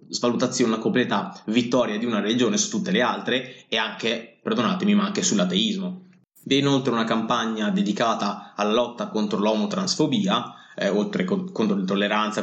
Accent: native